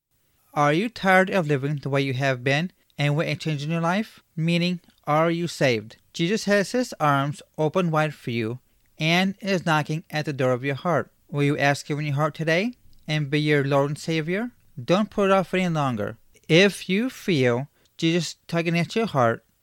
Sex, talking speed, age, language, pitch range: male, 200 wpm, 30-49, English, 130-170 Hz